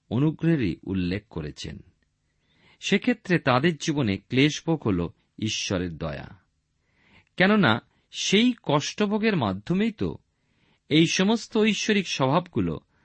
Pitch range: 95-160 Hz